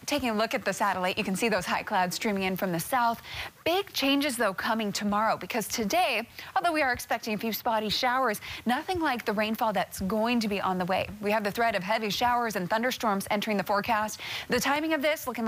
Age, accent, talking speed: 20-39, American, 235 wpm